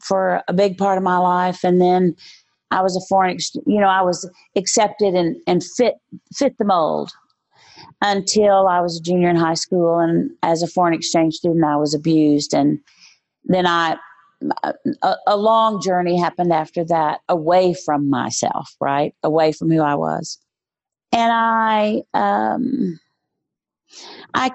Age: 40-59